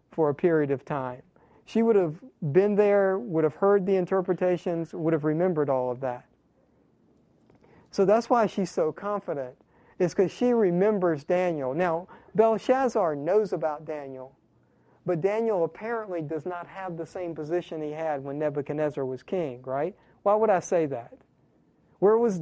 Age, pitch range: 40-59, 155-195 Hz